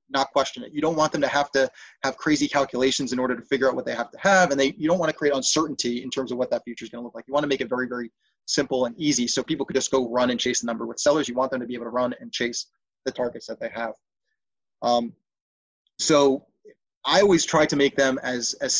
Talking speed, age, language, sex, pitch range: 285 wpm, 30-49, English, male, 125-155 Hz